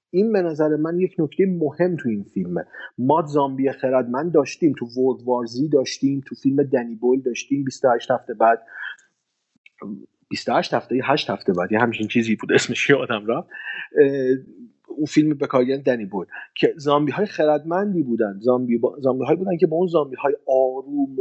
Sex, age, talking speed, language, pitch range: male, 40-59, 155 wpm, Persian, 130-185 Hz